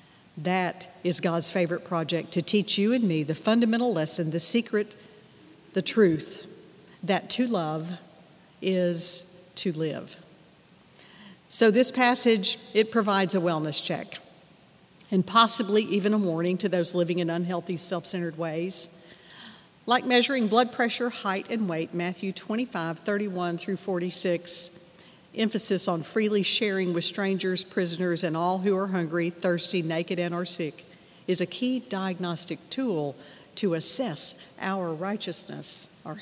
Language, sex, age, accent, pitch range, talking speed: English, female, 50-69, American, 170-200 Hz, 135 wpm